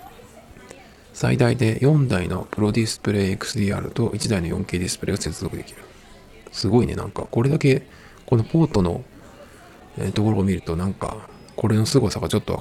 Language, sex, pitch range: Japanese, male, 90-120 Hz